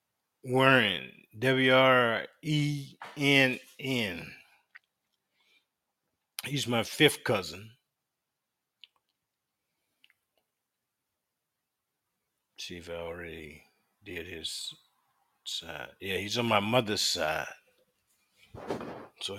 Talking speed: 65 wpm